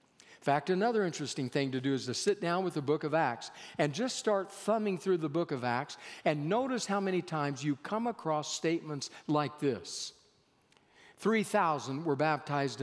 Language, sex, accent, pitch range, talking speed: English, male, American, 145-200 Hz, 180 wpm